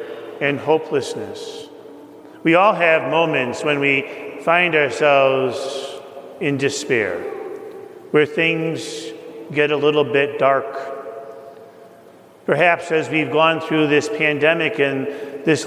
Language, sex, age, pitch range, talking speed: English, male, 50-69, 145-180 Hz, 105 wpm